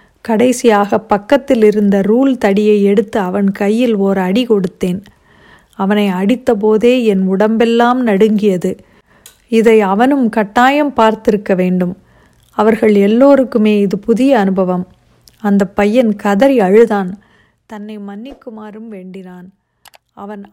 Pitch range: 200-235 Hz